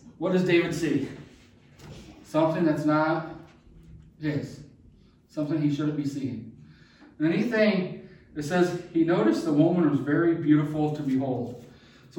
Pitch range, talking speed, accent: 120-170 Hz, 130 wpm, American